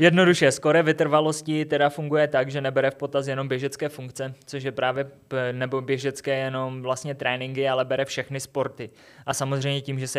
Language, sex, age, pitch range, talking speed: Czech, male, 20-39, 130-140 Hz, 185 wpm